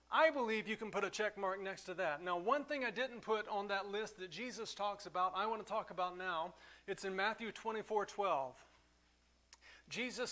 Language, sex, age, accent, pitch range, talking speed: English, male, 40-59, American, 185-240 Hz, 210 wpm